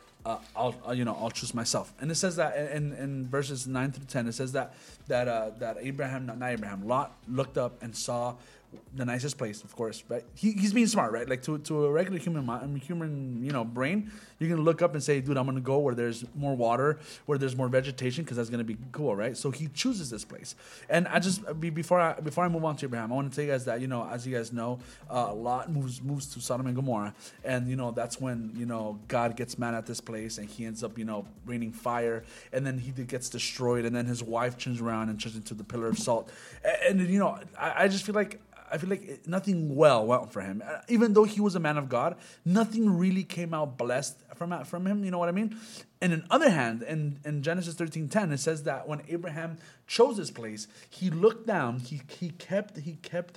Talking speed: 245 wpm